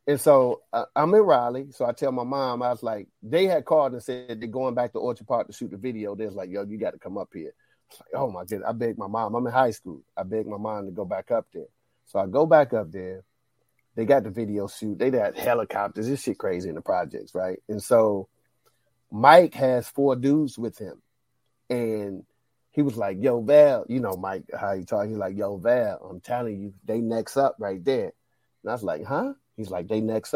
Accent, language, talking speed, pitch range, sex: American, English, 245 wpm, 105-130 Hz, male